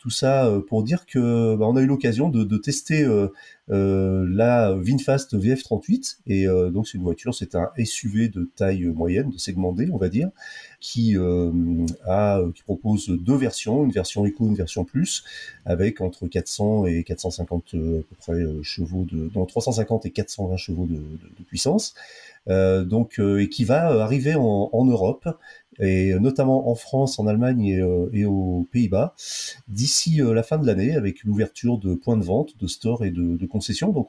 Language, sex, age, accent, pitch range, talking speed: French, male, 30-49, French, 95-125 Hz, 185 wpm